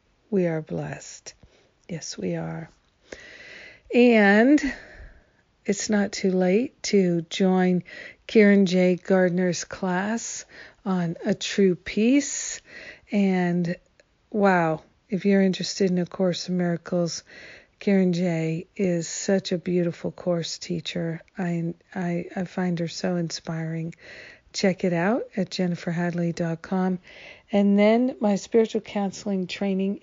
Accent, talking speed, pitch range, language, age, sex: American, 115 wpm, 180-215 Hz, English, 50-69, female